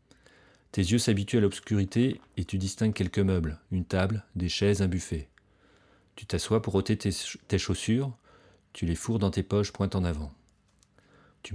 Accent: French